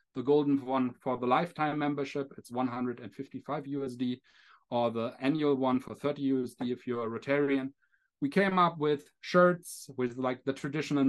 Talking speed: 160 wpm